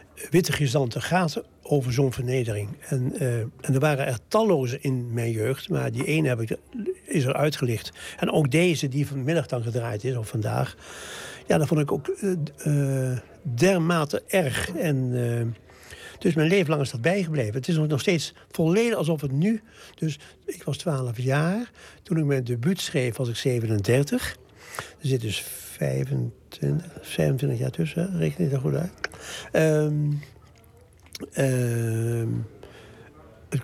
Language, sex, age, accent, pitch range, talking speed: Dutch, male, 60-79, Dutch, 125-165 Hz, 155 wpm